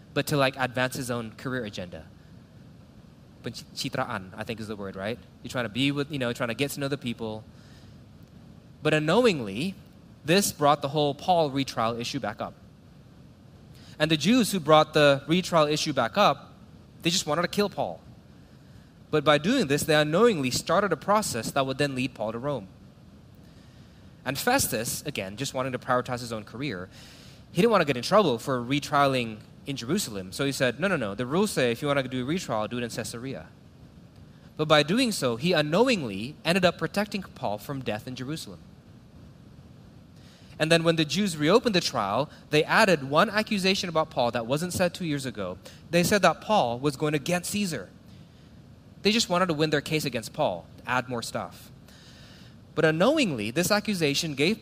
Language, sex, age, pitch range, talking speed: English, male, 20-39, 125-175 Hz, 190 wpm